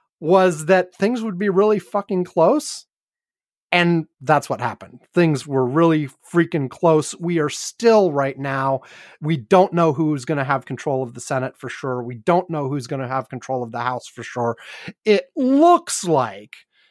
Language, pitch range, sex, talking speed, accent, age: English, 145-185 Hz, male, 180 wpm, American, 30-49